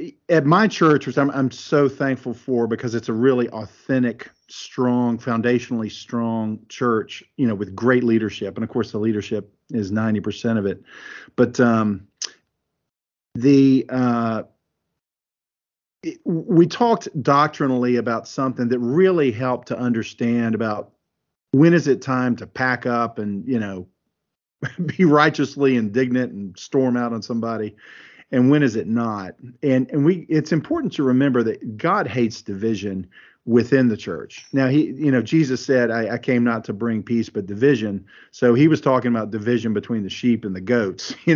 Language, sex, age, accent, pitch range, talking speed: English, male, 50-69, American, 115-140 Hz, 165 wpm